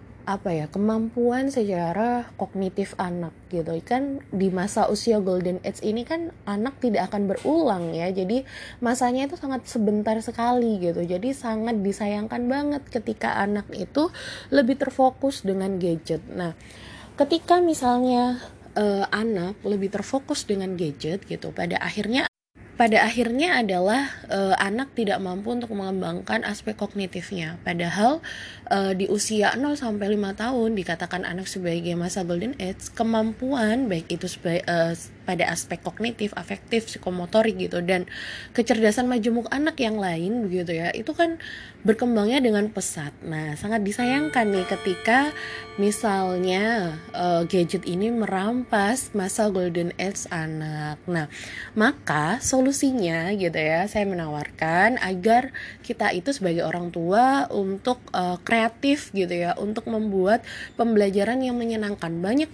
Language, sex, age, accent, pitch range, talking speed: Indonesian, female, 20-39, native, 180-235 Hz, 130 wpm